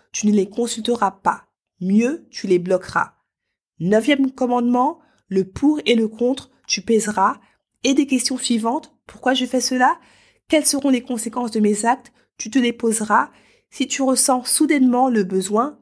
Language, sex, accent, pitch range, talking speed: French, female, French, 210-260 Hz, 165 wpm